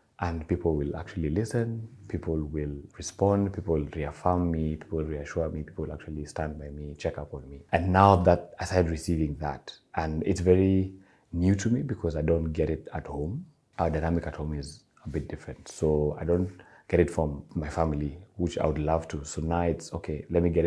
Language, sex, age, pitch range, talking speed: English, male, 30-49, 75-90 Hz, 215 wpm